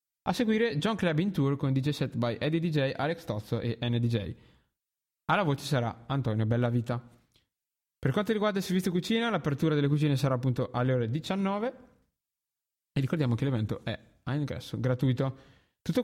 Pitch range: 125-165 Hz